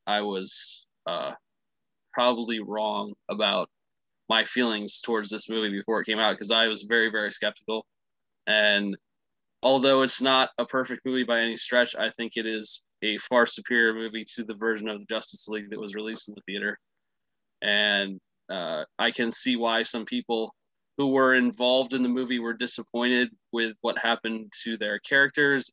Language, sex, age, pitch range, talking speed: English, male, 20-39, 105-120 Hz, 175 wpm